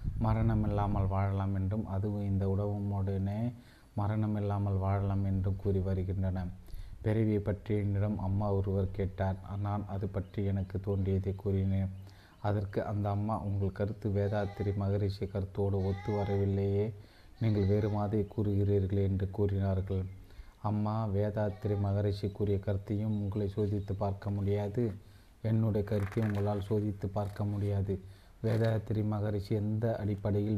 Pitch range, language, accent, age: 100-105 Hz, Tamil, native, 30-49